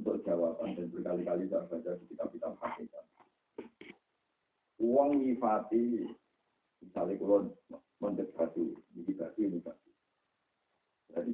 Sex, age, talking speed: male, 50-69, 75 wpm